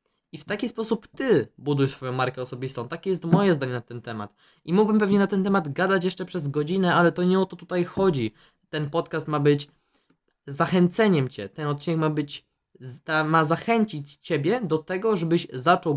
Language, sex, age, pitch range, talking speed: Polish, male, 20-39, 140-165 Hz, 190 wpm